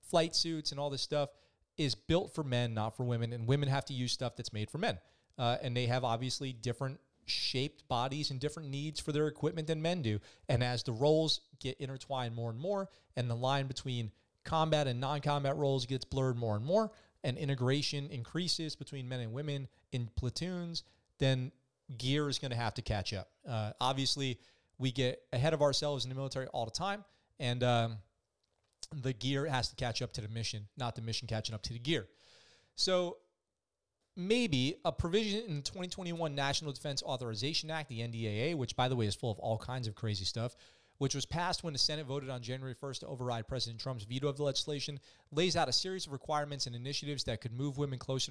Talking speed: 210 wpm